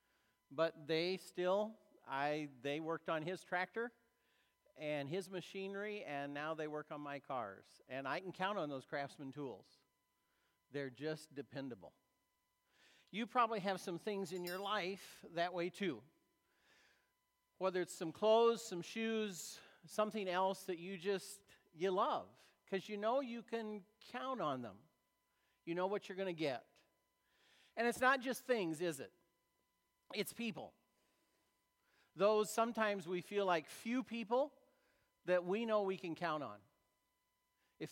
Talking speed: 145 wpm